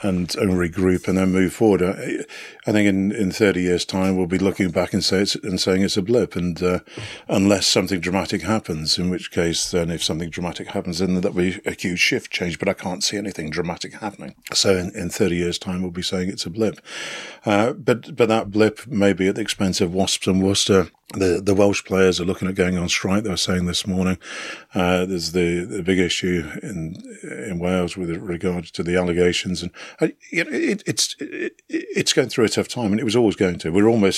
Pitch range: 90-100 Hz